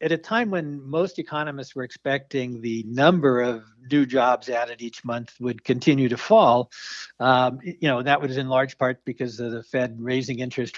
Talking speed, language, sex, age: 190 wpm, English, male, 60-79